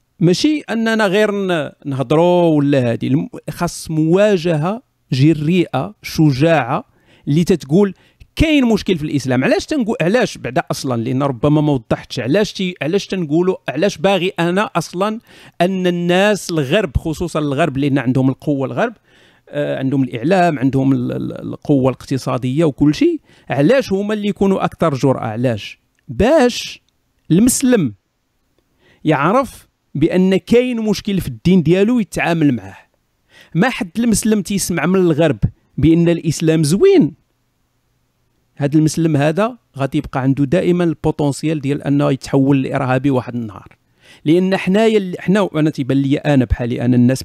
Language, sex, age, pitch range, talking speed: Arabic, male, 50-69, 135-185 Hz, 125 wpm